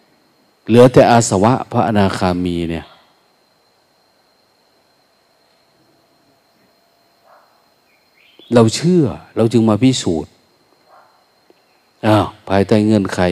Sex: male